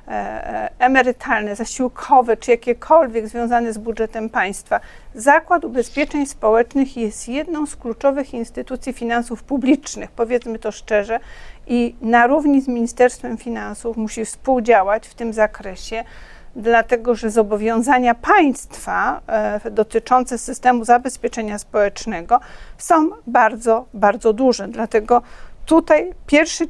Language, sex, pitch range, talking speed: Polish, female, 225-285 Hz, 105 wpm